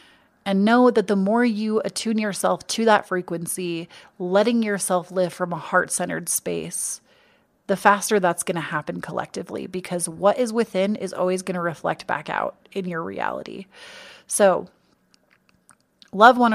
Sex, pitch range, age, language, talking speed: female, 185-220 Hz, 30-49, English, 150 wpm